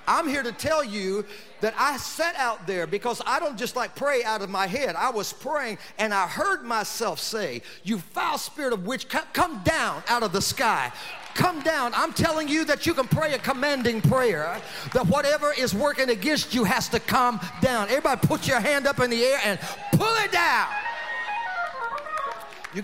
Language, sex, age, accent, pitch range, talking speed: English, male, 40-59, American, 195-255 Hz, 195 wpm